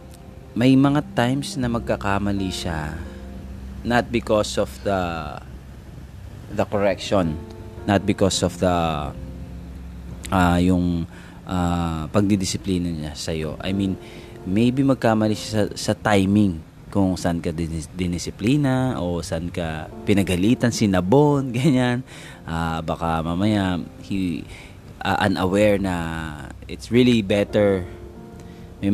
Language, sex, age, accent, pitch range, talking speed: English, male, 20-39, Filipino, 85-115 Hz, 110 wpm